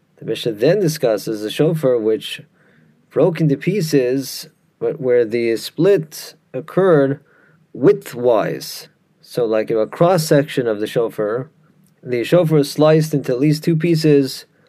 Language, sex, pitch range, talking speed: English, male, 130-165 Hz, 140 wpm